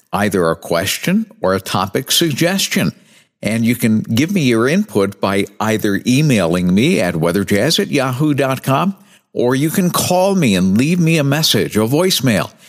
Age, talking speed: 60-79, 160 wpm